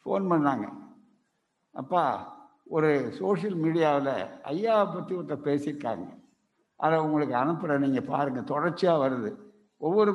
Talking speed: 105 wpm